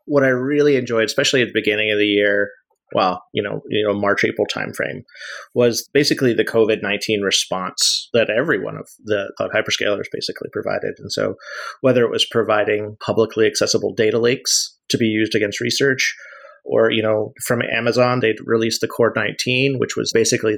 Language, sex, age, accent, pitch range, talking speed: English, male, 30-49, American, 110-130 Hz, 180 wpm